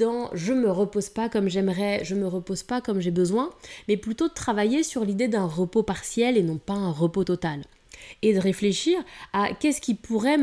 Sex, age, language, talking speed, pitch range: female, 20-39, French, 200 wpm, 190-235 Hz